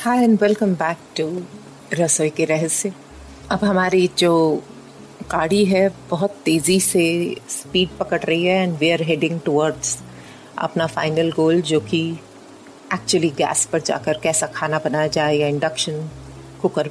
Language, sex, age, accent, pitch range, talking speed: Hindi, female, 30-49, native, 160-200 Hz, 140 wpm